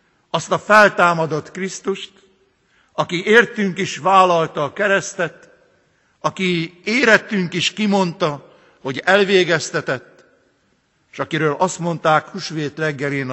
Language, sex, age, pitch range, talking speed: Hungarian, male, 60-79, 145-195 Hz, 100 wpm